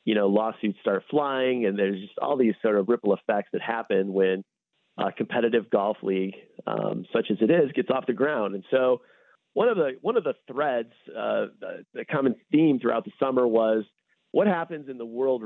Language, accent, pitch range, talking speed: English, American, 110-140 Hz, 205 wpm